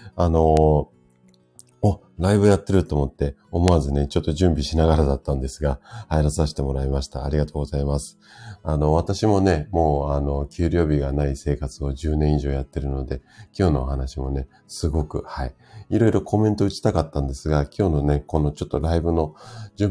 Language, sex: Japanese, male